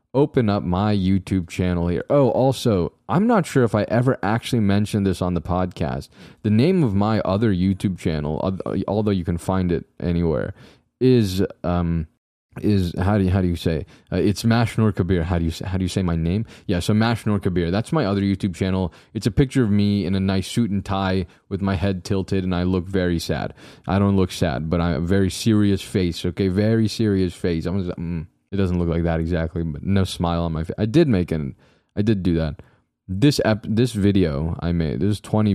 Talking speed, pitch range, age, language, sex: 220 wpm, 85-105 Hz, 20-39, English, male